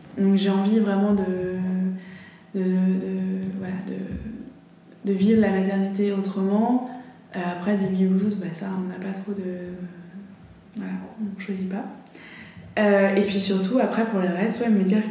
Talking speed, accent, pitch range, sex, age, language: 165 wpm, French, 185-215 Hz, female, 20-39, French